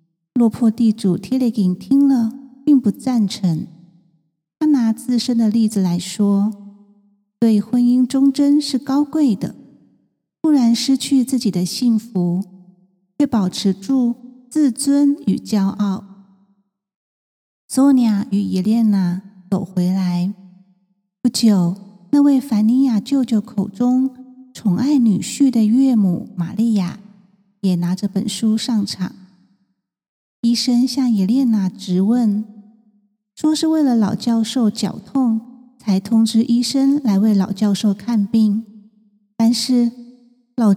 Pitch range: 195-250 Hz